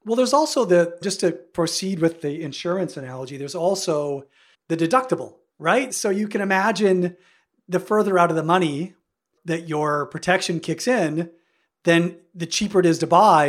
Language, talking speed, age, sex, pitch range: English, 170 wpm, 40-59, male, 160-200 Hz